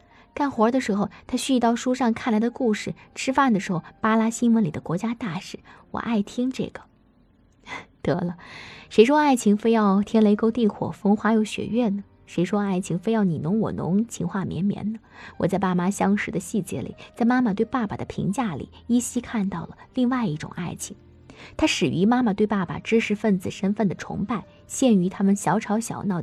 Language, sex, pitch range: Chinese, female, 190-235 Hz